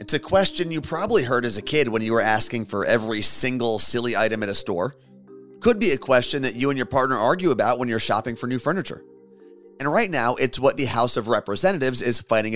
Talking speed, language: 235 wpm, English